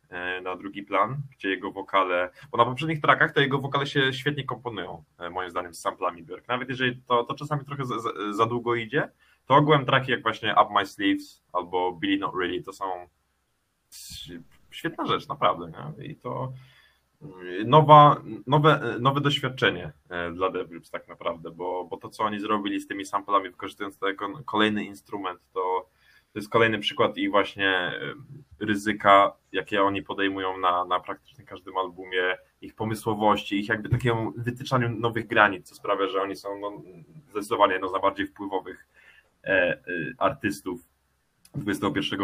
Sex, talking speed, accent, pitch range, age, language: male, 160 wpm, native, 100-135 Hz, 20-39, Polish